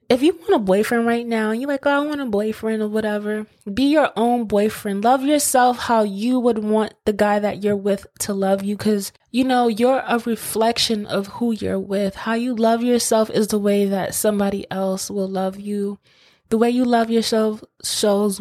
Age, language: 20-39, English